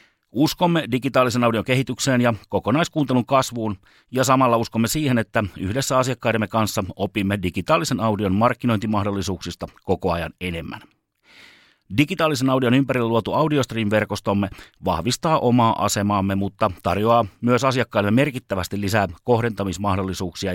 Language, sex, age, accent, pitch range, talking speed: Finnish, male, 30-49, native, 95-125 Hz, 110 wpm